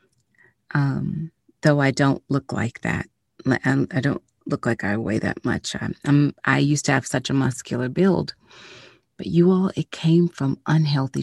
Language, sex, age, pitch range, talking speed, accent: English, female, 30-49, 125-150 Hz, 170 wpm, American